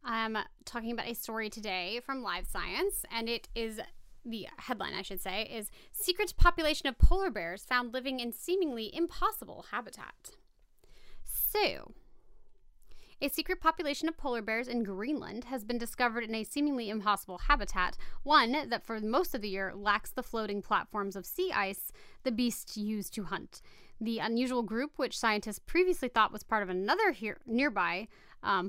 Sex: female